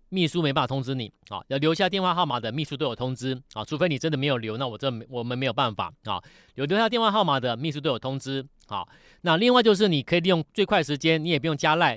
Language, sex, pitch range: Chinese, male, 130-165 Hz